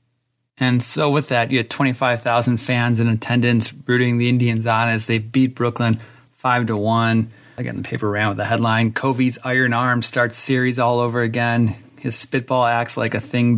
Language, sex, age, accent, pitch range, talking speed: English, male, 30-49, American, 115-130 Hz, 185 wpm